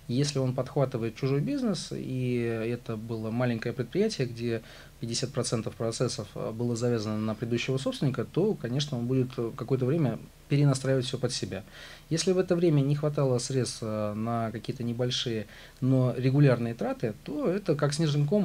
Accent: native